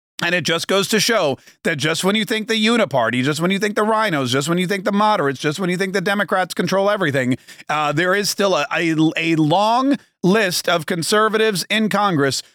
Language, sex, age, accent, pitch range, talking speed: English, male, 40-59, American, 155-200 Hz, 220 wpm